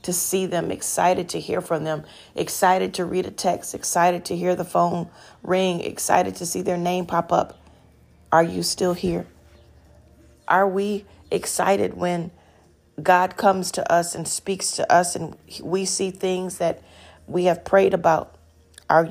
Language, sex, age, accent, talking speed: English, female, 40-59, American, 165 wpm